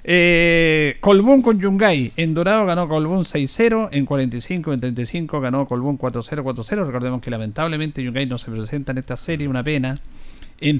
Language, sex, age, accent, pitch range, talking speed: Spanish, male, 50-69, Argentinian, 130-175 Hz, 165 wpm